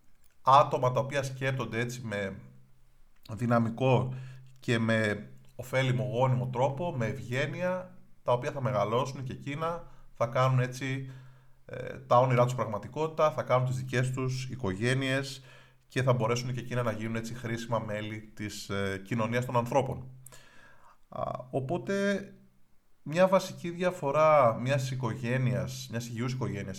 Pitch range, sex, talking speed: 115-135 Hz, male, 125 wpm